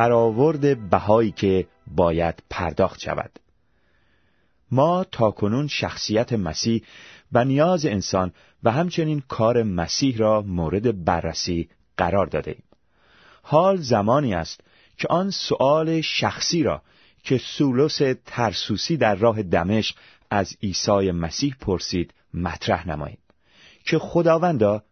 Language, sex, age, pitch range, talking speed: Persian, male, 30-49, 85-130 Hz, 110 wpm